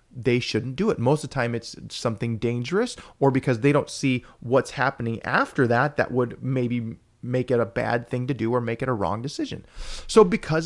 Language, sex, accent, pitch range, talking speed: English, male, American, 120-160 Hz, 215 wpm